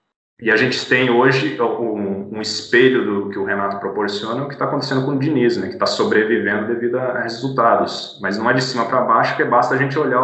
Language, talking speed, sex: Portuguese, 230 wpm, male